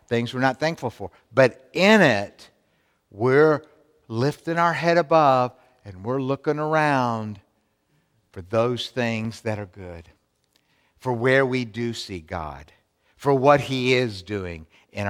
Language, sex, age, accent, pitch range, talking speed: English, male, 60-79, American, 115-155 Hz, 140 wpm